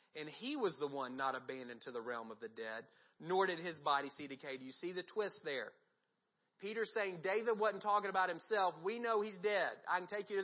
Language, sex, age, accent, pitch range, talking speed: English, male, 40-59, American, 150-205 Hz, 235 wpm